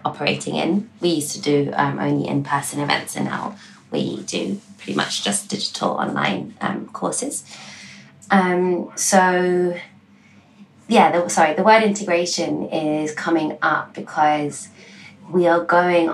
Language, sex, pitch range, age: English, female, 145-175 Hz, 20-39